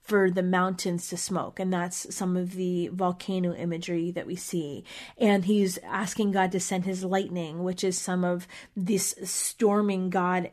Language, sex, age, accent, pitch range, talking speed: English, female, 30-49, American, 180-200 Hz, 170 wpm